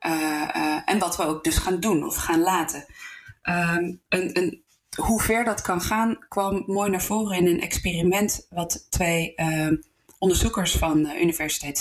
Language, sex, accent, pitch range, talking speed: Dutch, female, Dutch, 155-200 Hz, 165 wpm